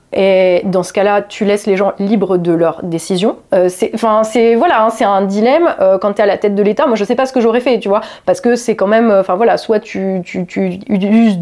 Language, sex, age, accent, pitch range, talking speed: French, female, 30-49, French, 185-235 Hz, 270 wpm